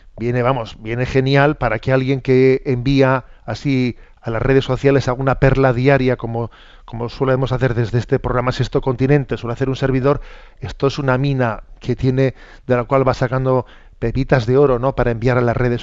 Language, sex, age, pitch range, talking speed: Spanish, male, 40-59, 120-145 Hz, 190 wpm